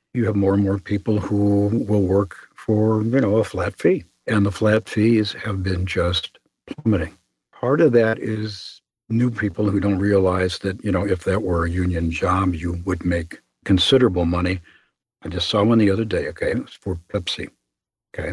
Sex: male